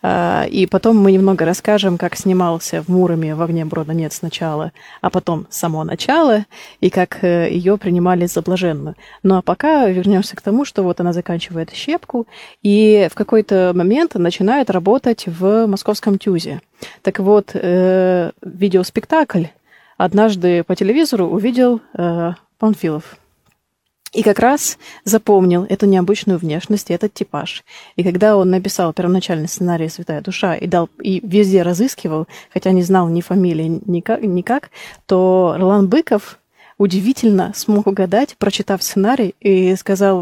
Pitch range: 175-210 Hz